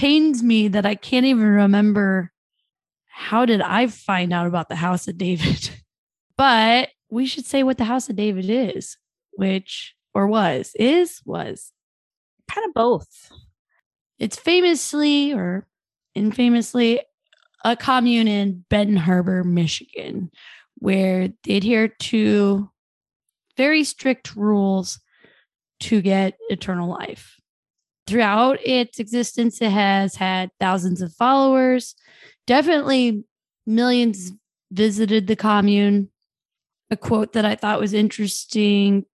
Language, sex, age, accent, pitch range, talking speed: English, female, 20-39, American, 195-245 Hz, 120 wpm